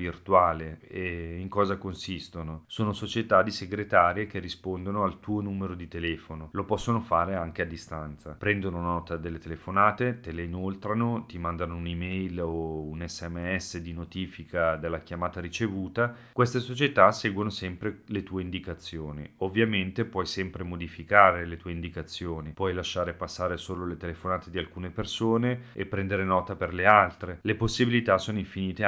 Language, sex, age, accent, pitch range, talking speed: Italian, male, 30-49, native, 85-100 Hz, 150 wpm